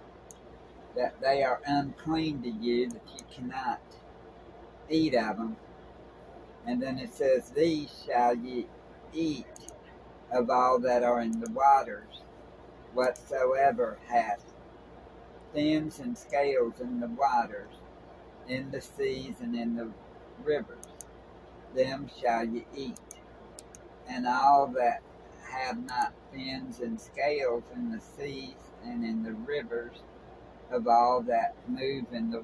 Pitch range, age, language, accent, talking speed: 115-160 Hz, 60-79, English, American, 125 wpm